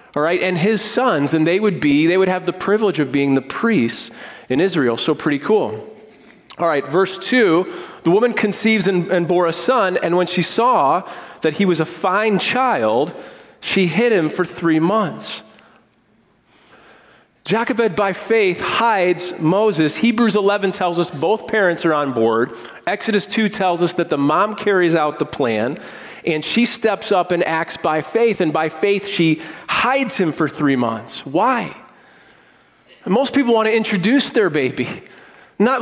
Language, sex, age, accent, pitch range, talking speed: English, male, 40-59, American, 160-215 Hz, 170 wpm